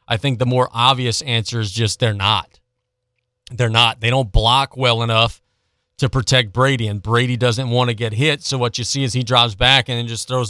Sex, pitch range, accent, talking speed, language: male, 115-130 Hz, American, 225 wpm, English